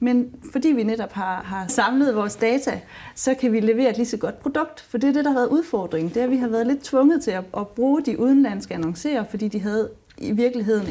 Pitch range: 185-240 Hz